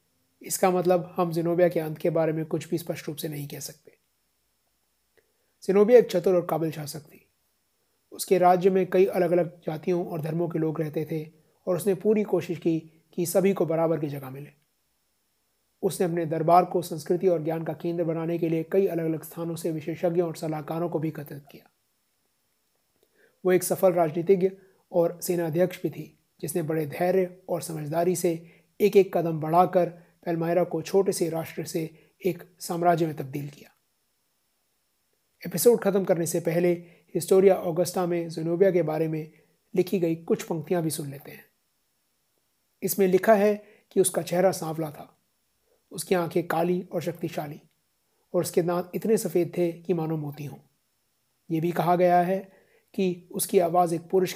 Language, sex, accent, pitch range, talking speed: Hindi, male, native, 165-185 Hz, 170 wpm